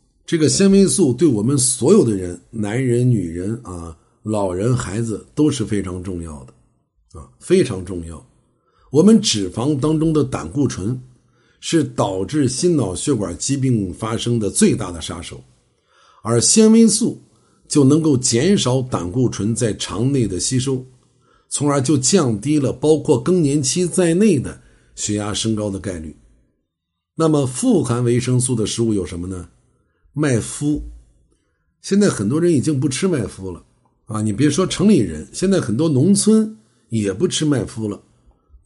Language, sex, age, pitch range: Chinese, male, 50-69, 100-150 Hz